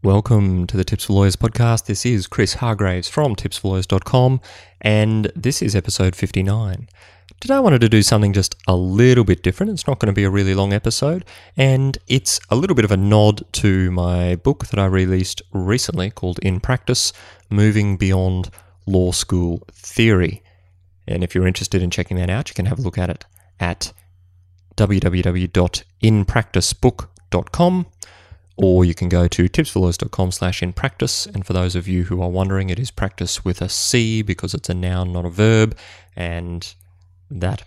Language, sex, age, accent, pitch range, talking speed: English, male, 30-49, Australian, 90-105 Hz, 175 wpm